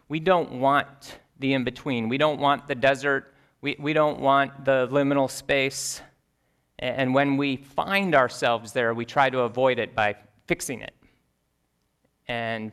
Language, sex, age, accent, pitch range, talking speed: English, male, 30-49, American, 100-135 Hz, 150 wpm